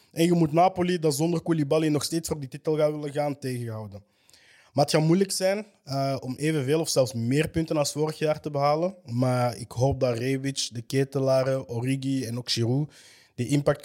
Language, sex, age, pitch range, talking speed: Dutch, male, 20-39, 120-150 Hz, 190 wpm